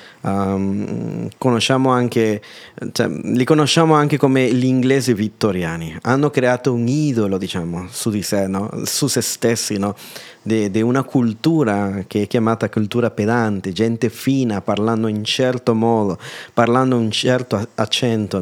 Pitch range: 110-135 Hz